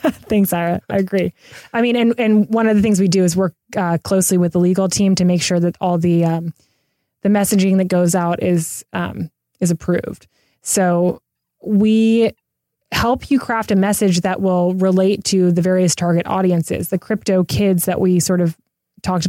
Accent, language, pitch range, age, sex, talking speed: American, English, 175-195 Hz, 20-39, female, 190 wpm